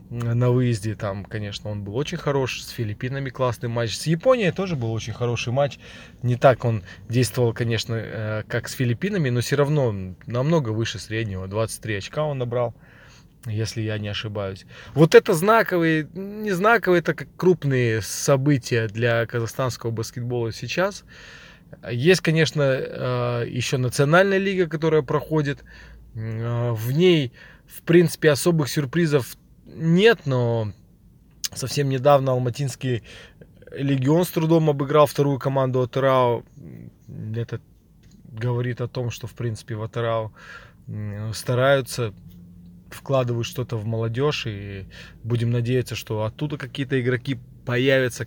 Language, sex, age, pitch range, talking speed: Russian, male, 20-39, 115-145 Hz, 125 wpm